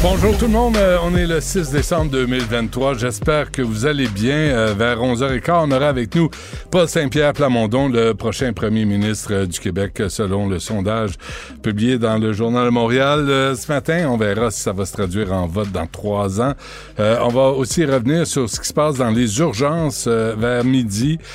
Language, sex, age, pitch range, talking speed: French, male, 60-79, 110-145 Hz, 190 wpm